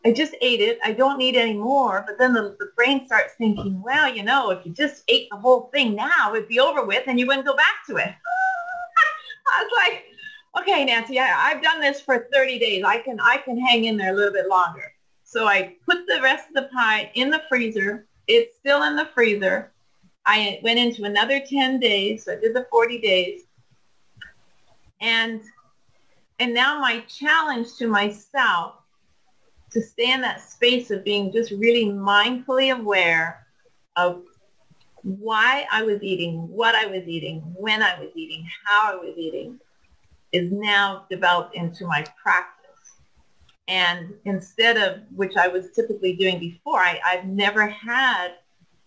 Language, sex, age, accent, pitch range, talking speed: English, female, 40-59, American, 190-265 Hz, 175 wpm